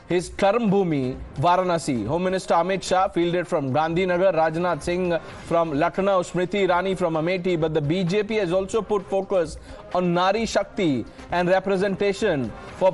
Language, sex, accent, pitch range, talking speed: English, male, Indian, 170-200 Hz, 145 wpm